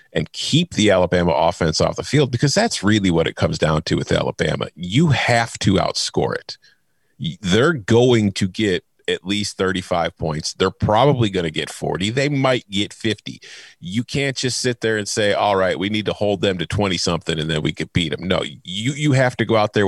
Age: 40-59